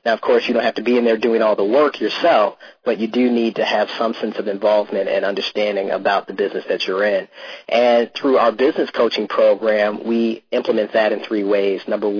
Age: 30-49